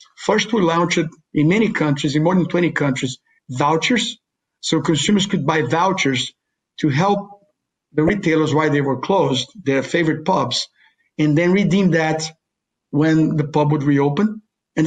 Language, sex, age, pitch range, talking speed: English, male, 50-69, 150-175 Hz, 155 wpm